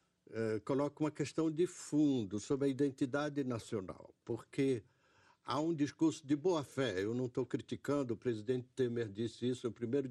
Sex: male